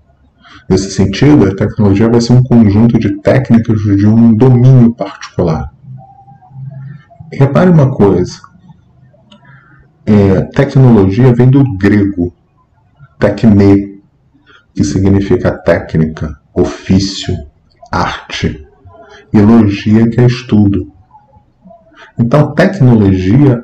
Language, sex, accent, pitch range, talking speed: Portuguese, male, Brazilian, 95-130 Hz, 90 wpm